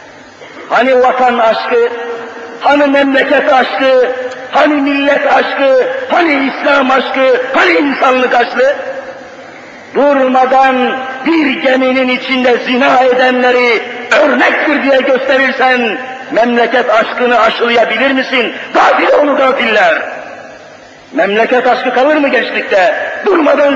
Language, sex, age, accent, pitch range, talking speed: Turkish, male, 50-69, native, 245-275 Hz, 95 wpm